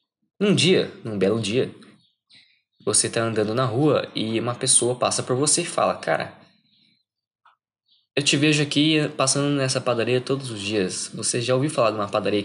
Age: 20-39